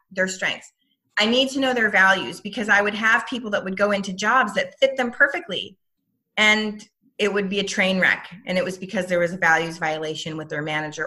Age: 30-49